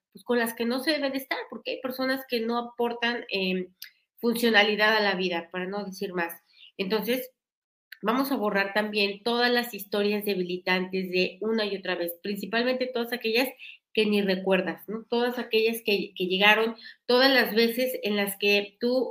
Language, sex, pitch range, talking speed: Spanish, female, 200-240 Hz, 175 wpm